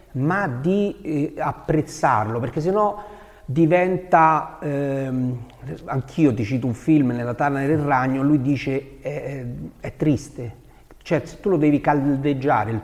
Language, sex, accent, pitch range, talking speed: Italian, male, native, 120-160 Hz, 130 wpm